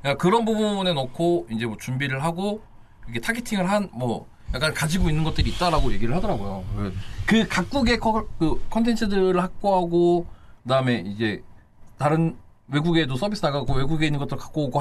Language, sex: Korean, male